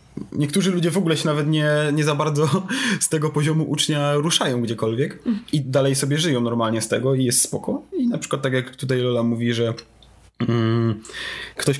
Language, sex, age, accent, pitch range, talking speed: Polish, male, 20-39, native, 125-150 Hz, 185 wpm